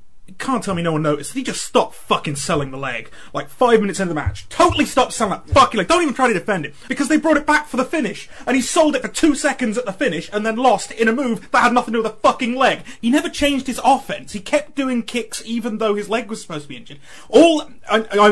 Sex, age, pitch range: male, 30-49, 210-280 Hz